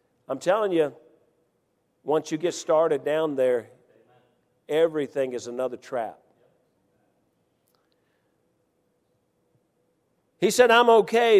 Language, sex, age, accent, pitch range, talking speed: English, male, 50-69, American, 180-205 Hz, 90 wpm